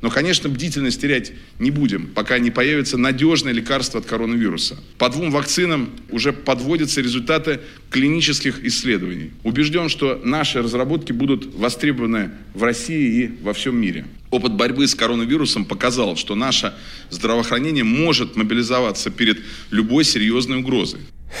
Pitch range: 105-145 Hz